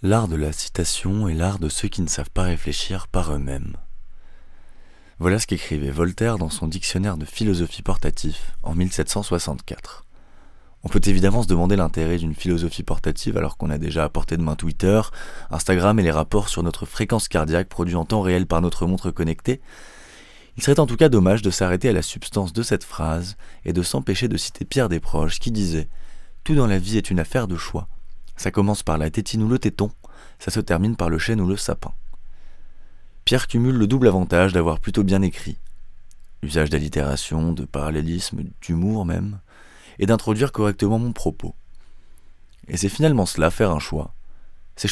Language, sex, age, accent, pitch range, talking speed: French, male, 20-39, French, 80-105 Hz, 190 wpm